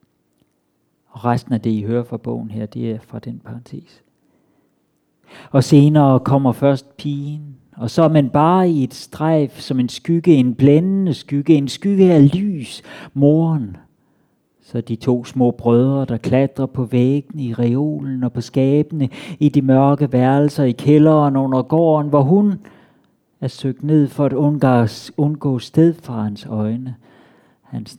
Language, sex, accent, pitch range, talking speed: Danish, male, native, 120-150 Hz, 155 wpm